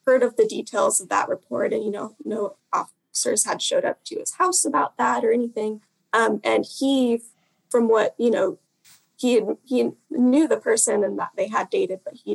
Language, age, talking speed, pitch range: English, 10-29, 200 wpm, 195-290 Hz